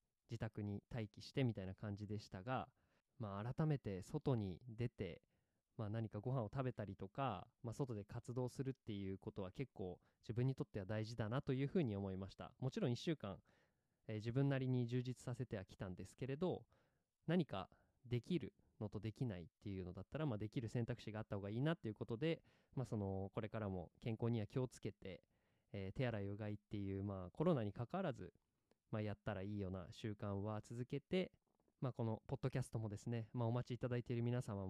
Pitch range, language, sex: 105-135 Hz, Japanese, male